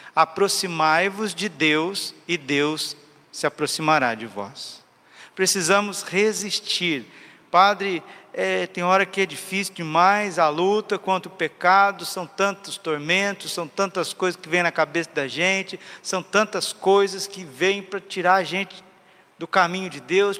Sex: male